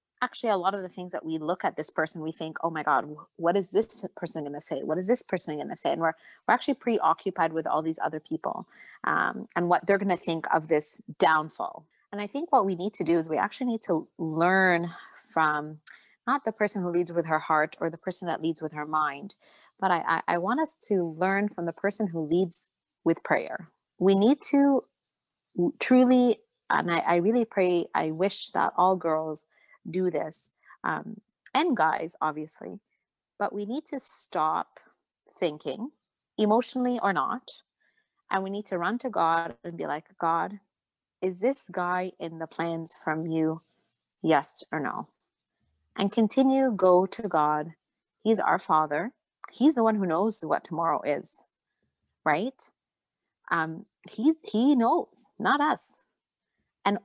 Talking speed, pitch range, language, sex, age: 180 wpm, 160-225 Hz, English, female, 30-49